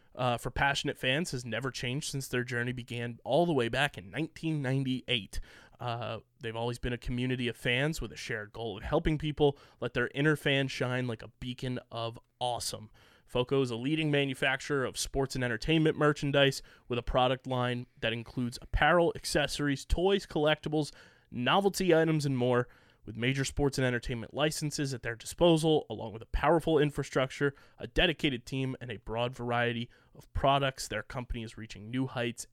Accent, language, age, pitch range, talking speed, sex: American, English, 20-39, 115-145 Hz, 175 wpm, male